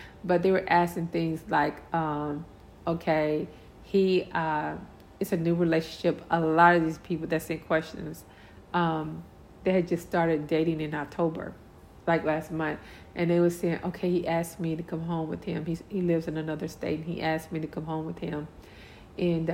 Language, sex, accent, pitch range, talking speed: English, female, American, 150-175 Hz, 190 wpm